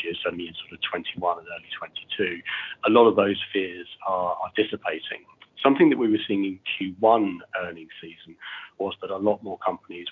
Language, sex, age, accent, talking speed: English, male, 30-49, British, 185 wpm